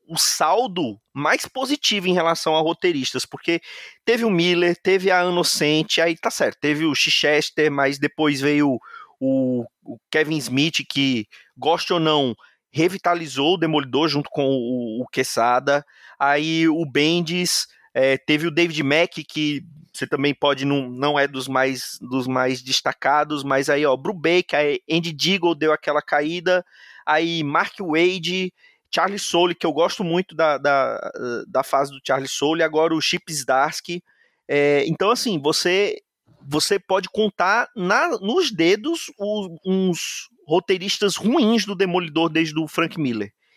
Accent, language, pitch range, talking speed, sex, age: Brazilian, Portuguese, 145-190 Hz, 155 wpm, male, 30-49